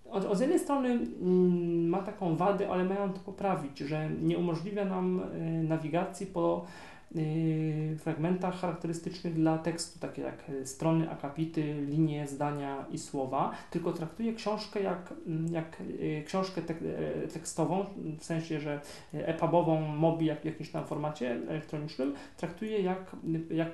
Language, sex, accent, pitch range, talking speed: Polish, male, native, 155-180 Hz, 120 wpm